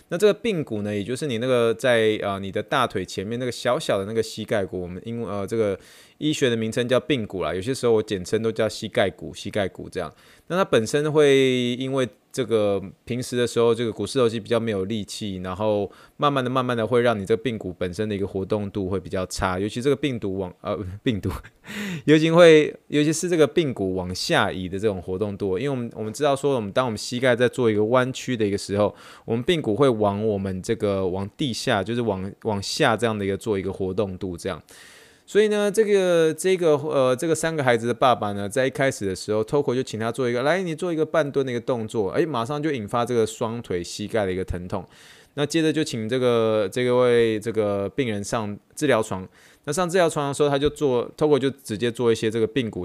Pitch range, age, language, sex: 100-135 Hz, 20-39, Chinese, male